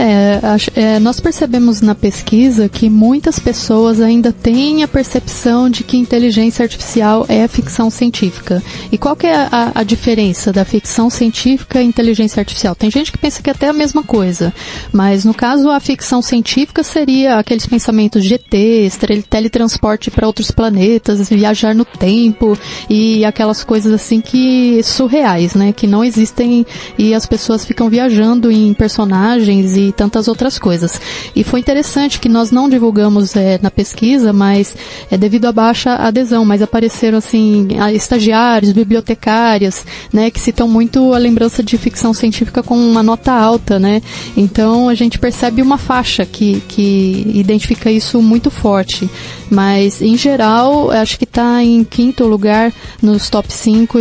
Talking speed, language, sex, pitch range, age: 160 wpm, Portuguese, female, 215-245 Hz, 30-49